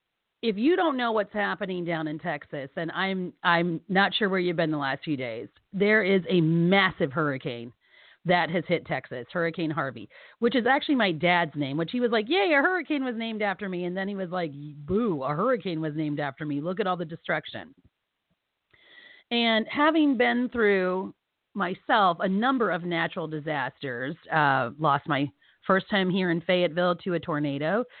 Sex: female